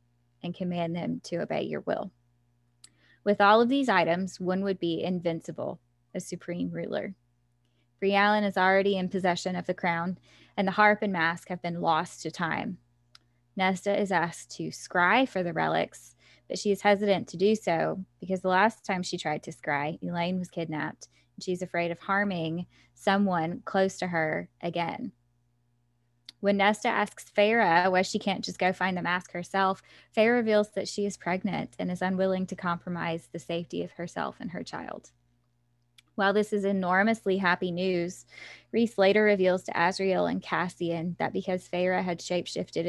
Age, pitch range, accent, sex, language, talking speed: 10-29, 165-195 Hz, American, female, English, 170 wpm